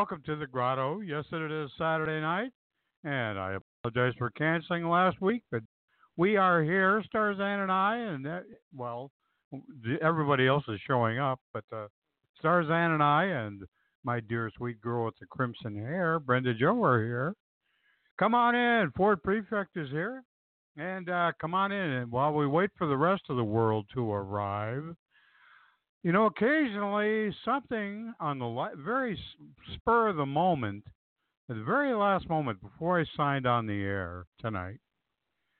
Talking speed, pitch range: 160 wpm, 120-190 Hz